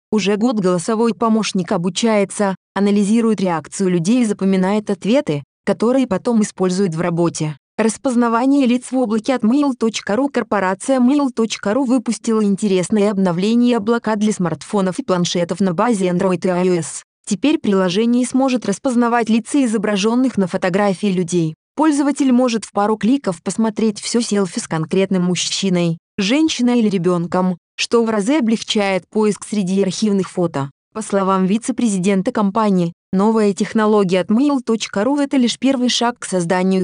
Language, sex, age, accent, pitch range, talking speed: Russian, female, 20-39, native, 185-235 Hz, 135 wpm